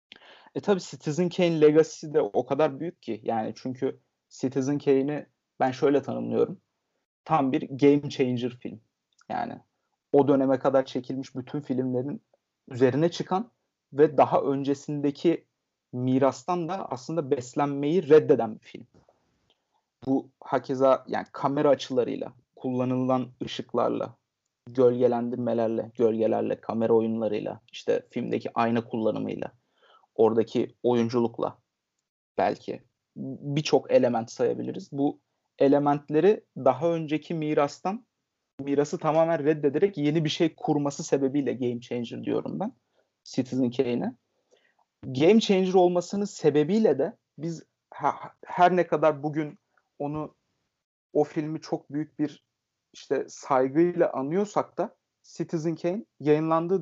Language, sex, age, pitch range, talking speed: Turkish, male, 30-49, 130-165 Hz, 110 wpm